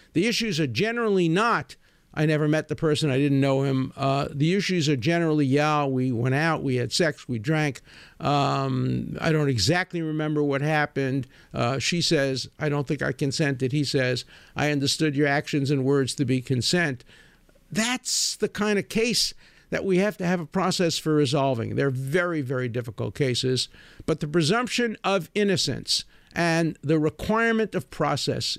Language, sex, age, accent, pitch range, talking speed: English, male, 50-69, American, 135-185 Hz, 175 wpm